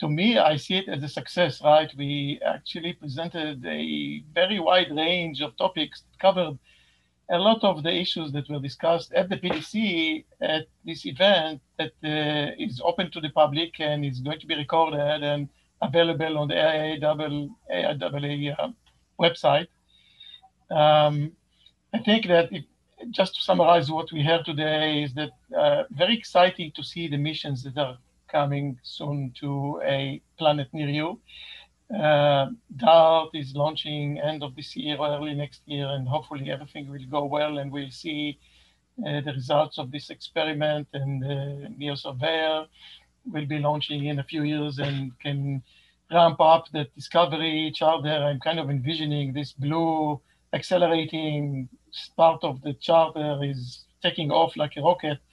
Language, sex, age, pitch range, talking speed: English, male, 60-79, 145-165 Hz, 155 wpm